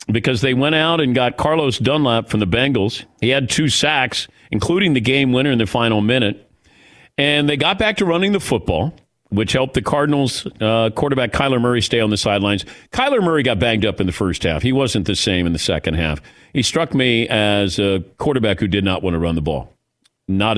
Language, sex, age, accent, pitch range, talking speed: English, male, 50-69, American, 105-150 Hz, 220 wpm